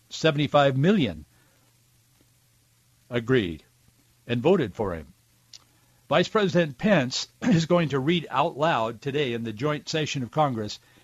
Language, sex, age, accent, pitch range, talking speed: English, male, 60-79, American, 125-155 Hz, 125 wpm